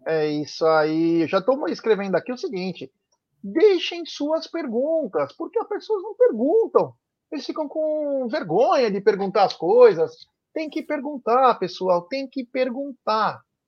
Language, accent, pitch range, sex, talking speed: Portuguese, Brazilian, 160-270 Hz, male, 140 wpm